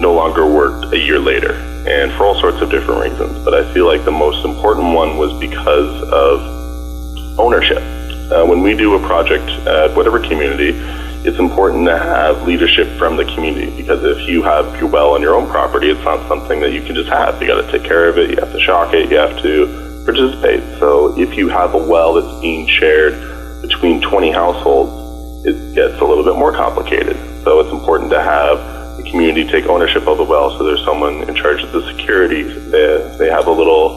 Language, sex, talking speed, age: English, male, 210 wpm, 30-49